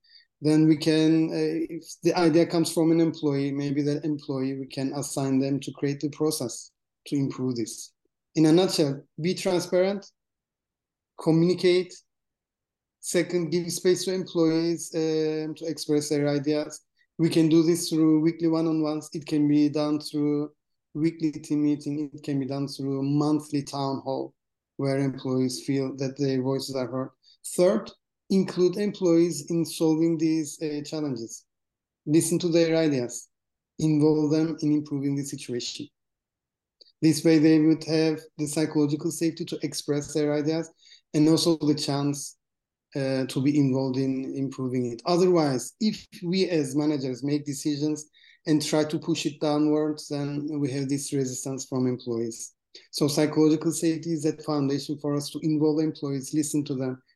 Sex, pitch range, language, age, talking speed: male, 140-160 Hz, English, 30-49, 155 wpm